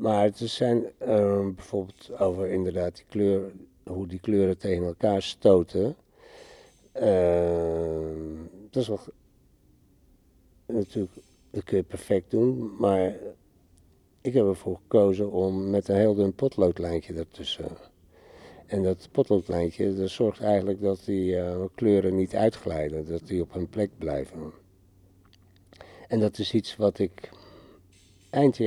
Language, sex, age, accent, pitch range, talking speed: Dutch, male, 60-79, Dutch, 90-105 Hz, 130 wpm